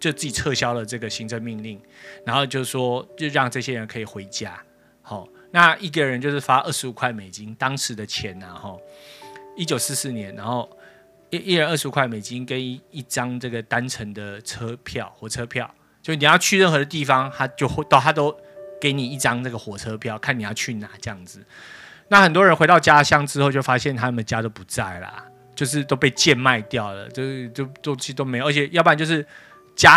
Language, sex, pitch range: Chinese, male, 115-155 Hz